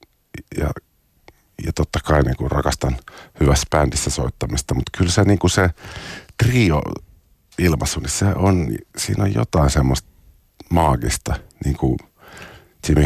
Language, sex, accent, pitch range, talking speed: Finnish, male, native, 65-80 Hz, 105 wpm